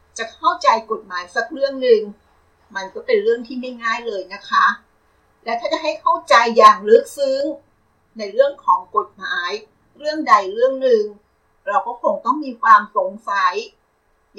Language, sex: Thai, female